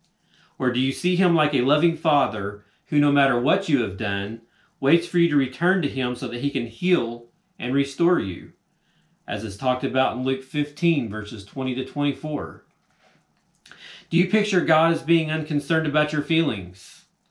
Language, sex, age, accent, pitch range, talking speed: English, male, 40-59, American, 115-155 Hz, 180 wpm